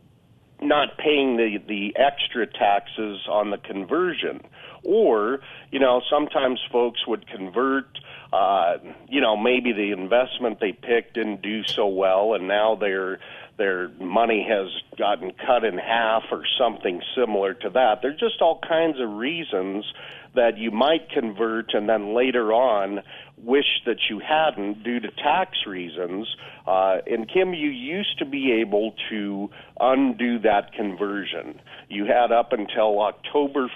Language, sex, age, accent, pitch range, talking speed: English, male, 40-59, American, 105-135 Hz, 150 wpm